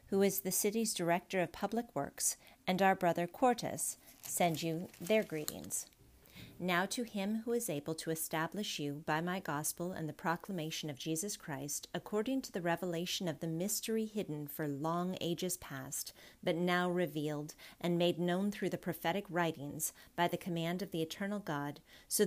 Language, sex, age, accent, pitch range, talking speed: English, female, 40-59, American, 150-190 Hz, 170 wpm